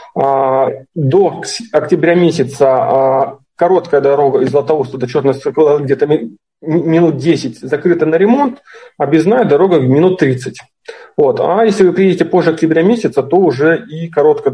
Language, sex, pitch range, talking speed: Russian, male, 135-190 Hz, 135 wpm